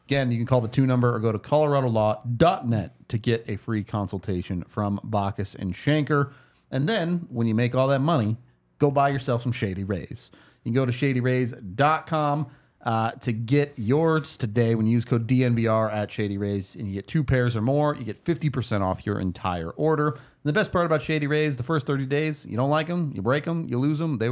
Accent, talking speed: American, 215 wpm